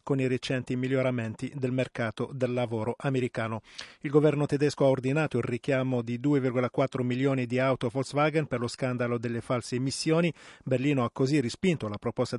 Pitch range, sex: 125-145 Hz, male